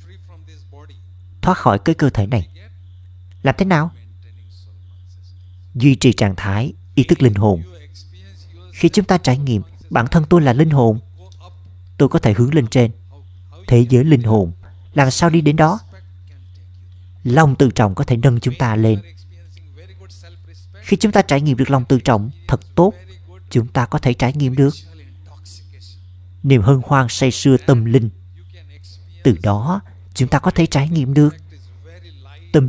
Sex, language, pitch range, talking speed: male, Vietnamese, 90-135 Hz, 160 wpm